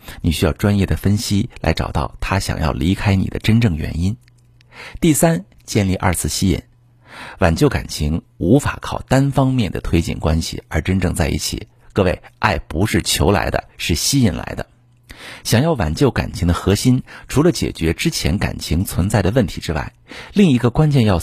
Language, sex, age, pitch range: Chinese, male, 50-69, 90-120 Hz